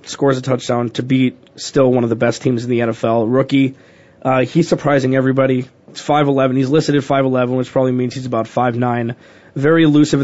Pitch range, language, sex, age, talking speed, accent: 135-160 Hz, English, male, 20-39, 195 wpm, American